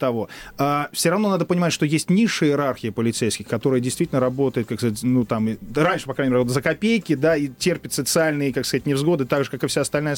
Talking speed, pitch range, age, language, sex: 220 wpm, 130-175 Hz, 30-49, Russian, male